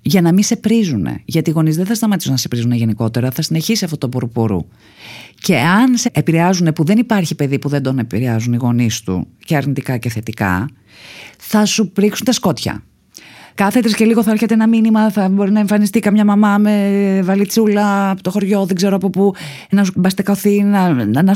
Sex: female